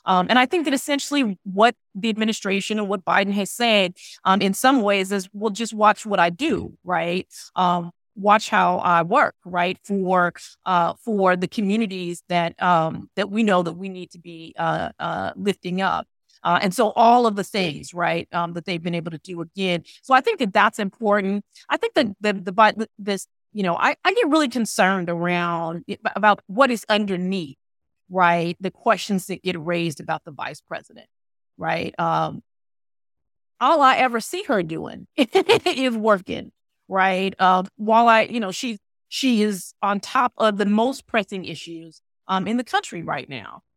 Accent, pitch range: American, 175-220 Hz